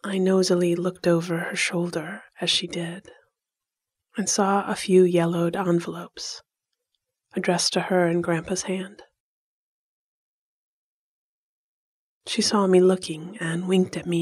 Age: 30-49